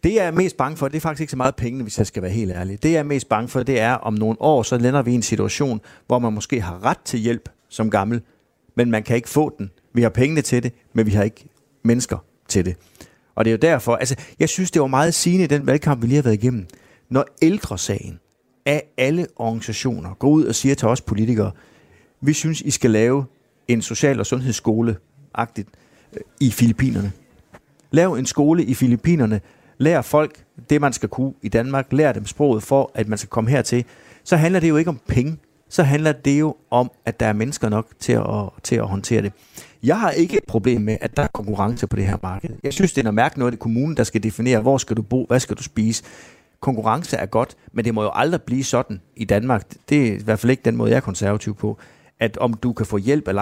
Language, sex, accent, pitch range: Danish, male, native, 110-135 Hz